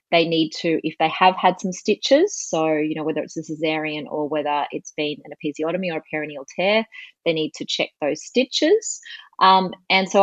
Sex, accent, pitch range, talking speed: female, Australian, 155-190 Hz, 205 wpm